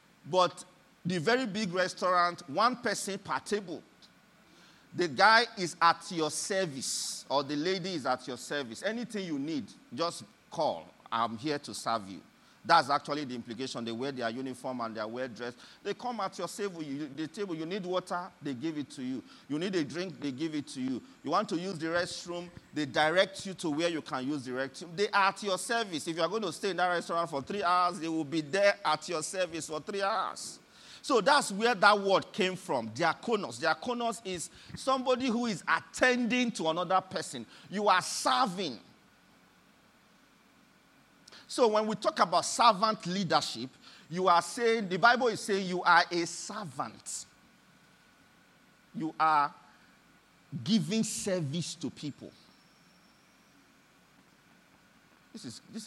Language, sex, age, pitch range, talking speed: English, male, 40-59, 160-220 Hz, 165 wpm